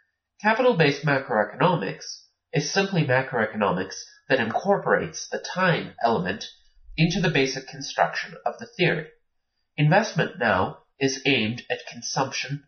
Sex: male